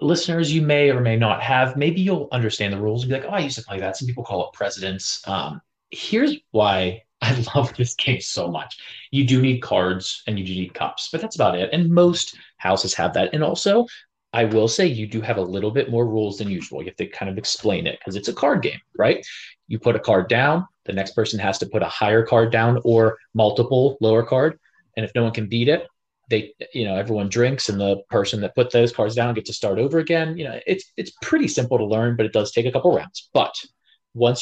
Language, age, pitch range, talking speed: English, 30-49, 110-140 Hz, 250 wpm